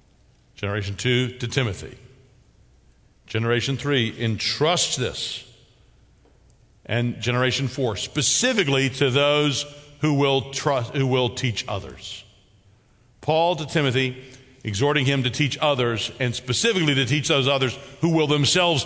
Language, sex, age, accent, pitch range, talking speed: English, male, 50-69, American, 105-135 Hz, 120 wpm